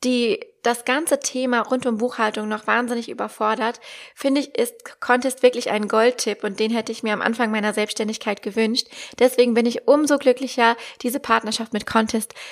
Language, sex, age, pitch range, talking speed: German, female, 20-39, 215-255 Hz, 175 wpm